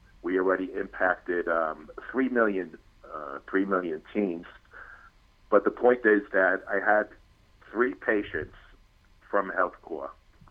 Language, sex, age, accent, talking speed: English, male, 50-69, American, 120 wpm